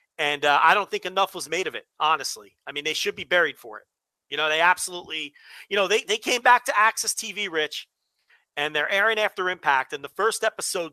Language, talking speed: English, 230 wpm